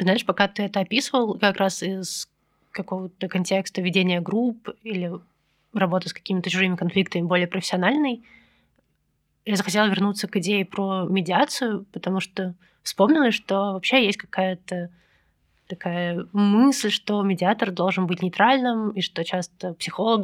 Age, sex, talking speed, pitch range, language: 20-39, female, 135 wpm, 175-195 Hz, Russian